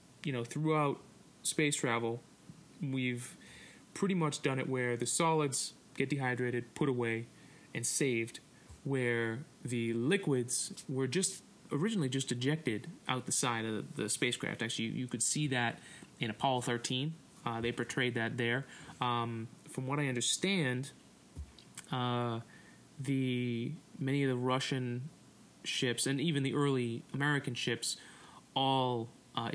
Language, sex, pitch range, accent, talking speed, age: English, male, 120-145 Hz, American, 140 wpm, 20-39